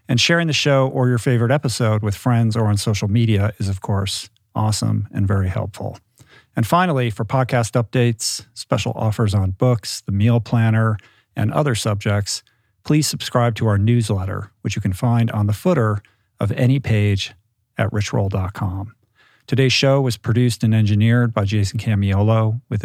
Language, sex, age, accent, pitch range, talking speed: English, male, 50-69, American, 105-120 Hz, 165 wpm